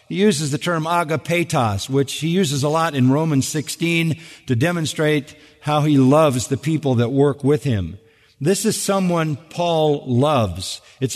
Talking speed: 160 wpm